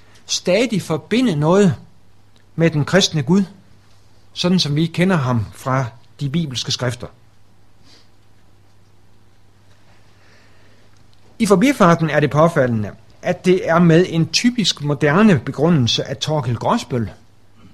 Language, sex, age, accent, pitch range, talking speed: Danish, male, 60-79, native, 110-170 Hz, 110 wpm